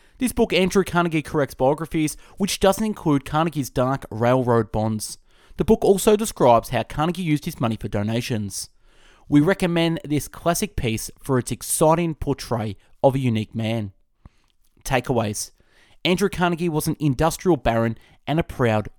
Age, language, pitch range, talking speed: 20-39, English, 115-170 Hz, 150 wpm